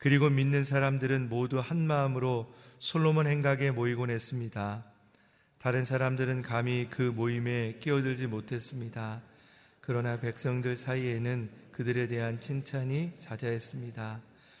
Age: 40-59